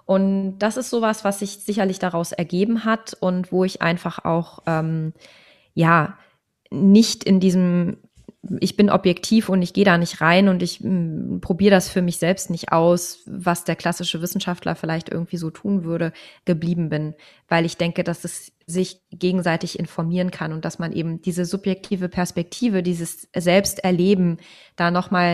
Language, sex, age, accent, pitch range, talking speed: German, female, 20-39, German, 170-195 Hz, 165 wpm